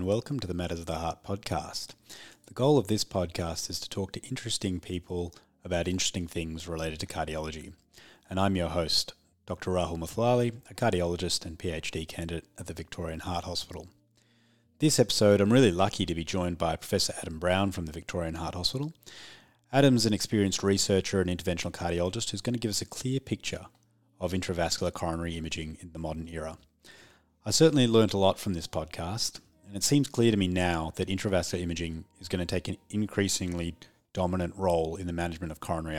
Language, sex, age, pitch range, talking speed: English, male, 30-49, 85-105 Hz, 190 wpm